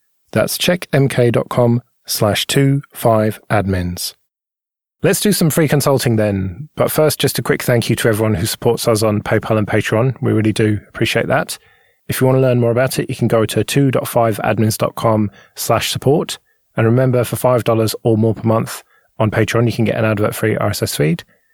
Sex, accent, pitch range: male, British, 110-140 Hz